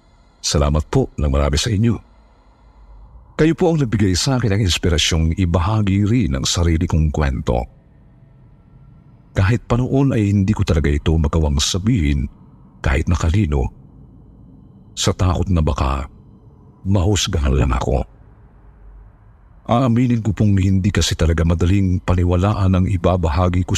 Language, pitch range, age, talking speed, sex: Filipino, 75-105 Hz, 50-69, 125 wpm, male